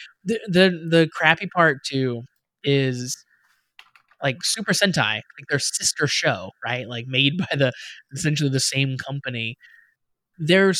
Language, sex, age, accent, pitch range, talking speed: English, male, 20-39, American, 130-165 Hz, 135 wpm